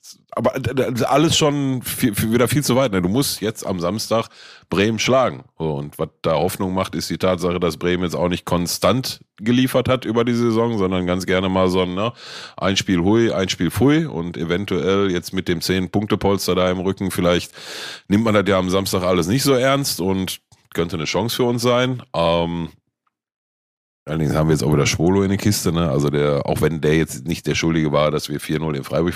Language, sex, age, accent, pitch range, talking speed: German, male, 30-49, German, 85-120 Hz, 215 wpm